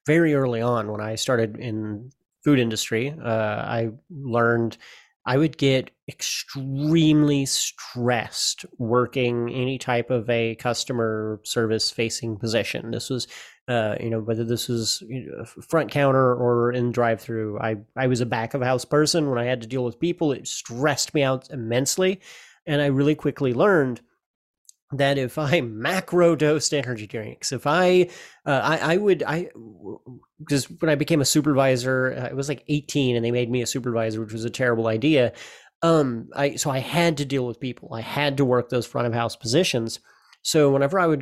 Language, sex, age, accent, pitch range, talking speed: English, male, 30-49, American, 115-145 Hz, 175 wpm